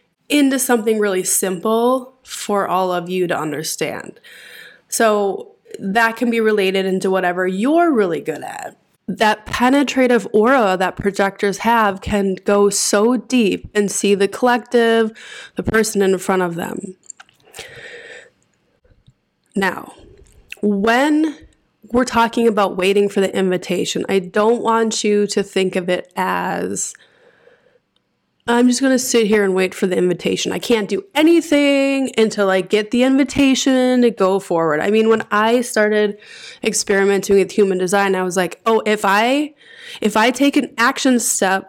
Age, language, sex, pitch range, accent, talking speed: 20-39, English, female, 195-250 Hz, American, 145 wpm